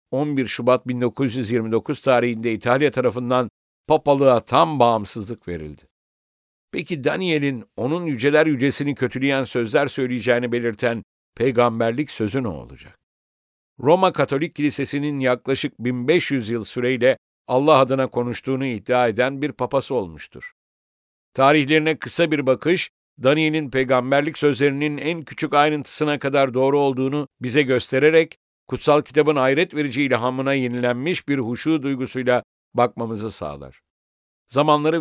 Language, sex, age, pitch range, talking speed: English, male, 60-79, 115-145 Hz, 110 wpm